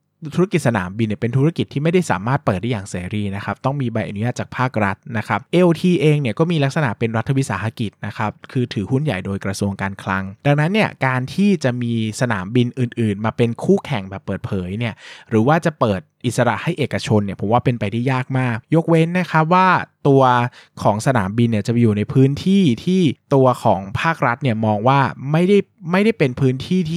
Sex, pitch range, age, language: male, 110-150 Hz, 20-39, Thai